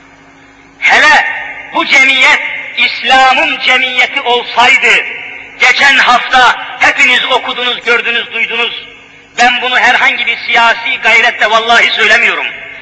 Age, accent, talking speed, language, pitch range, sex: 50-69, native, 95 wpm, Turkish, 260-320 Hz, male